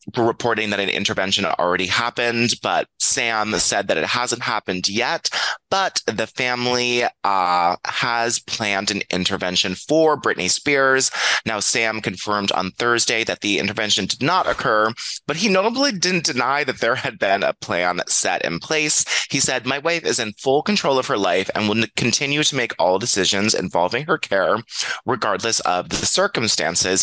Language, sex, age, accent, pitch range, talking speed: English, male, 30-49, American, 100-145 Hz, 165 wpm